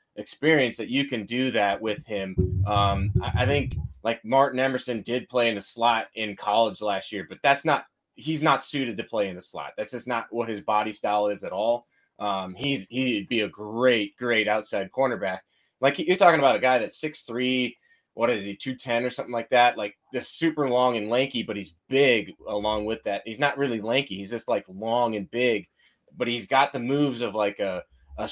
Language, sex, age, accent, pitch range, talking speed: English, male, 20-39, American, 100-125 Hz, 215 wpm